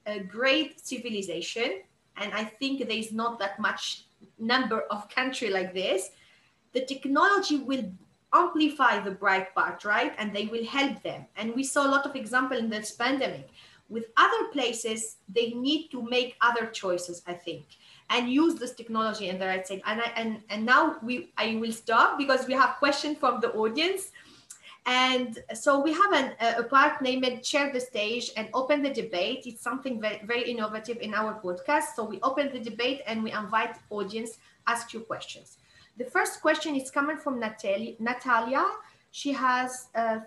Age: 30-49